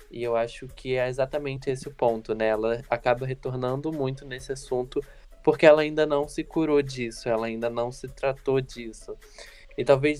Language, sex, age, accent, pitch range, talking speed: Portuguese, male, 10-29, Brazilian, 115-145 Hz, 180 wpm